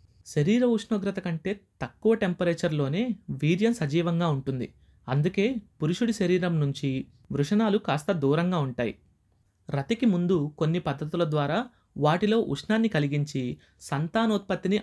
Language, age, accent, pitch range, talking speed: Telugu, 30-49, native, 130-185 Hz, 100 wpm